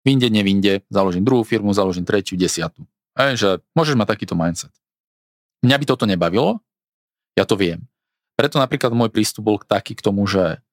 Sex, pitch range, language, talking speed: male, 100-130 Hz, Slovak, 160 wpm